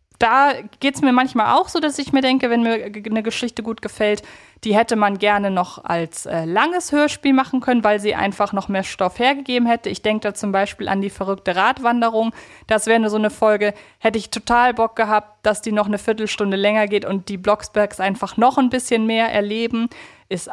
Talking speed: 215 wpm